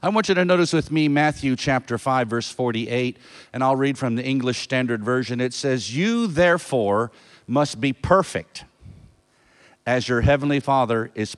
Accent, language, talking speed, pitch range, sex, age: American, English, 170 wpm, 125-160 Hz, male, 50-69